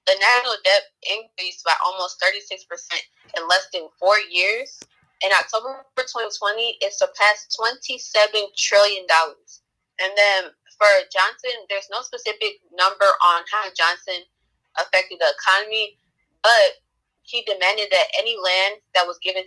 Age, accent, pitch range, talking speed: 20-39, American, 175-230 Hz, 145 wpm